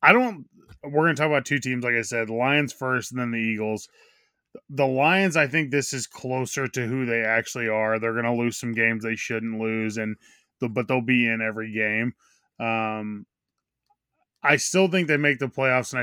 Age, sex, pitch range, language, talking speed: 20-39, male, 110-130 Hz, English, 210 wpm